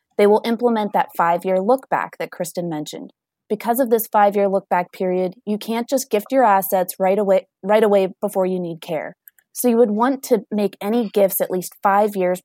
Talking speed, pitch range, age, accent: 195 wpm, 185-230 Hz, 20-39, American